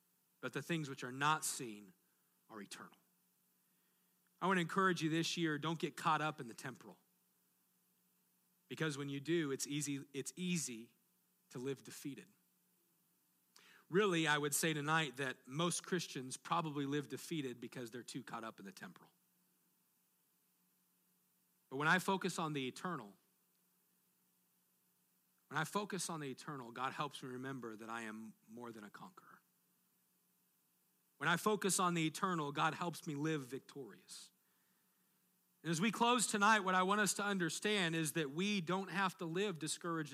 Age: 40-59